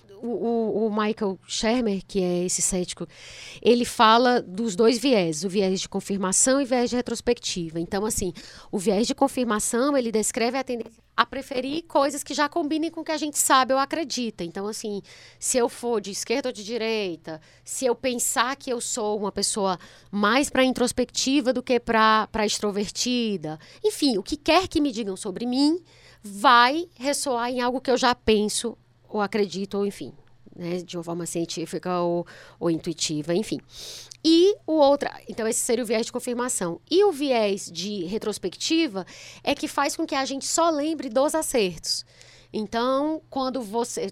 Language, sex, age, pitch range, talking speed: Portuguese, female, 20-39, 185-255 Hz, 180 wpm